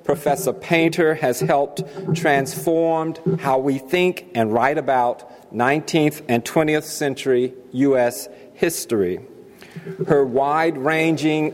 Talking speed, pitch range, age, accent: 105 wpm, 130-155 Hz, 50-69, American